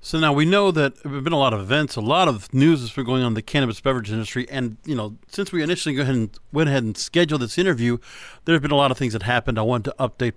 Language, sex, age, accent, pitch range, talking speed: English, male, 40-59, American, 125-170 Hz, 305 wpm